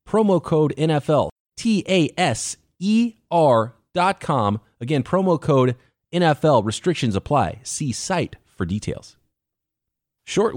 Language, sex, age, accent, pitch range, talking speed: English, male, 30-49, American, 110-150 Hz, 90 wpm